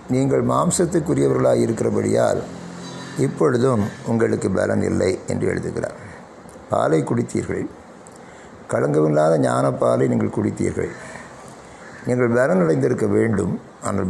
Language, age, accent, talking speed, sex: Tamil, 60-79, native, 90 wpm, male